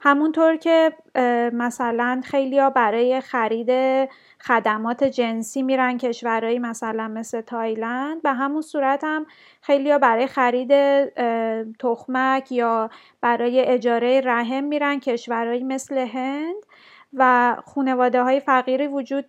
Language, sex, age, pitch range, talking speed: English, female, 30-49, 240-285 Hz, 105 wpm